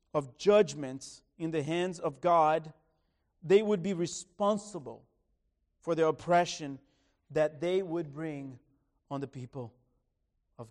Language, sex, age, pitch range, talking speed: English, male, 40-59, 140-205 Hz, 125 wpm